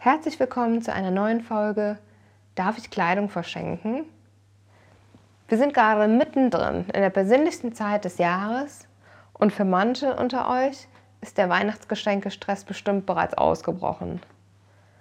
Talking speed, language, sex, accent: 125 wpm, German, female, German